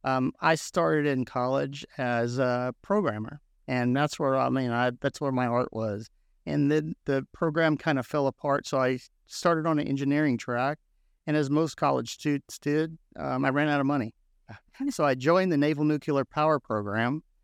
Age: 50-69